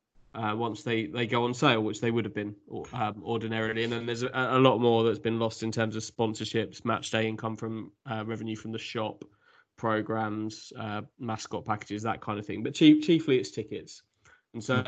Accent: British